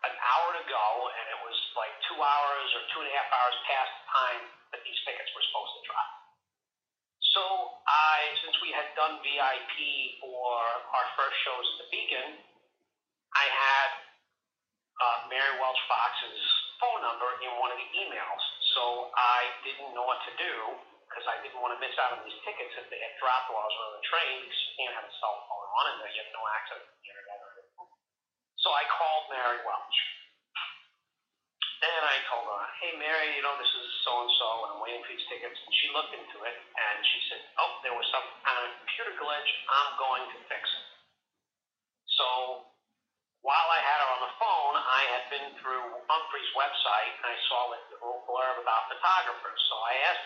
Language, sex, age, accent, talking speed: English, male, 40-59, American, 195 wpm